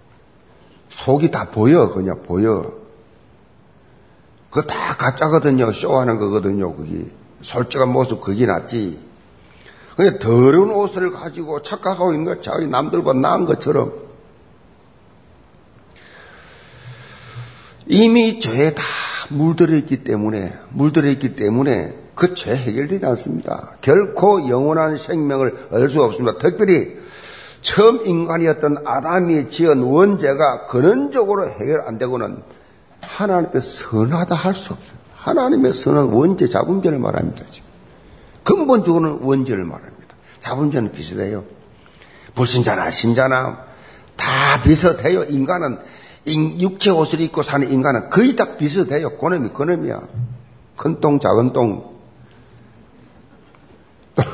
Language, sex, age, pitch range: Korean, male, 50-69, 125-170 Hz